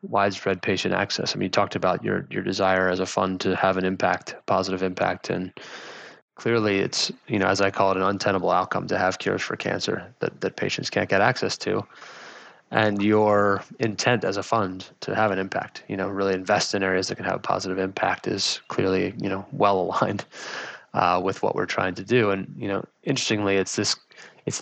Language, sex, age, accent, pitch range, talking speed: English, male, 20-39, American, 95-105 Hz, 210 wpm